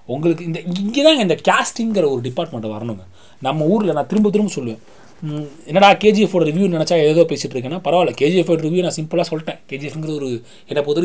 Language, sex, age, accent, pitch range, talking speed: Tamil, male, 30-49, native, 145-190 Hz, 175 wpm